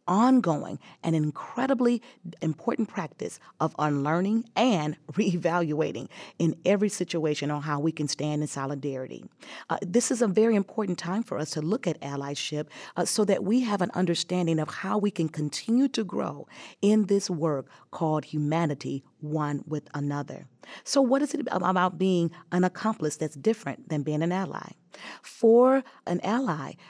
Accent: American